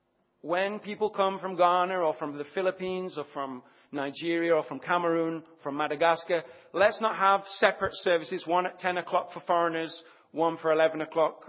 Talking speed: 165 wpm